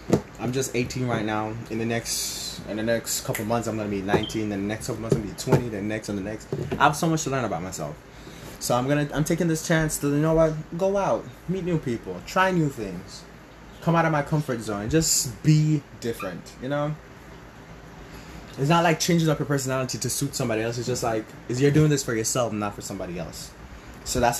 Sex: male